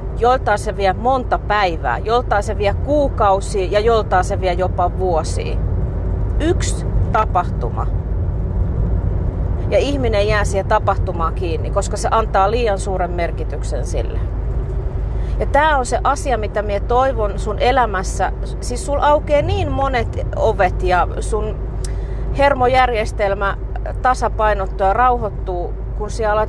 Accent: native